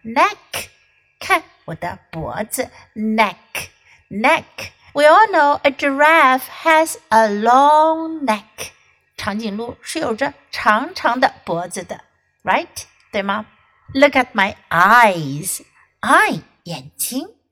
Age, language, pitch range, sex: 60-79, Chinese, 205-300 Hz, female